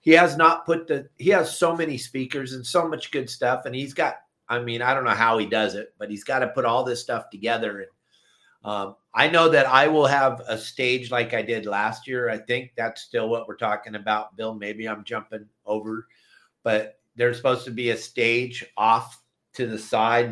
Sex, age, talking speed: male, 50-69, 220 wpm